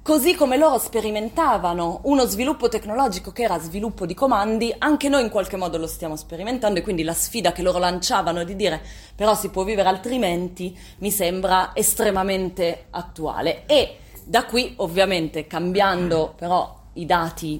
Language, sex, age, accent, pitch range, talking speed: Italian, female, 30-49, native, 170-220 Hz, 155 wpm